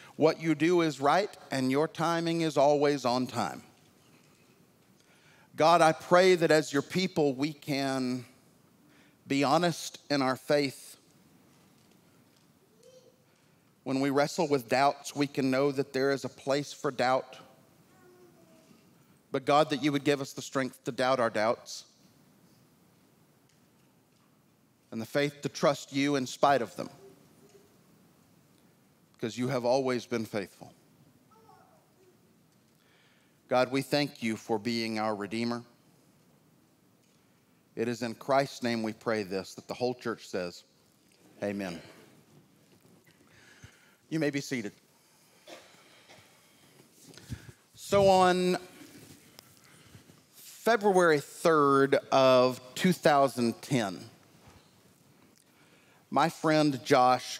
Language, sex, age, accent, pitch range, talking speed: English, male, 40-59, American, 125-155 Hz, 110 wpm